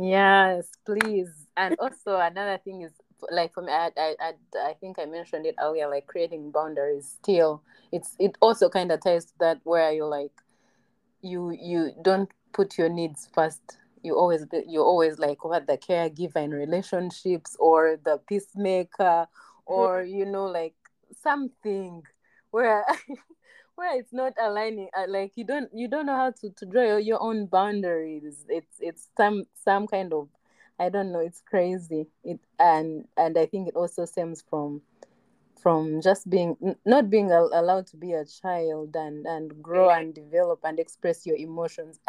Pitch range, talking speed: 160-200 Hz, 165 wpm